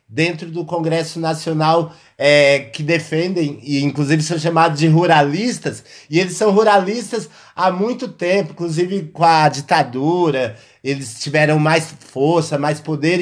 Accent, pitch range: Brazilian, 155-195 Hz